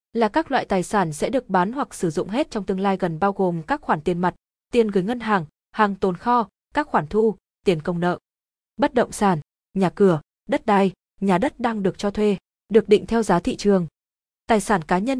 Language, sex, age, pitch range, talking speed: Vietnamese, female, 20-39, 180-230 Hz, 230 wpm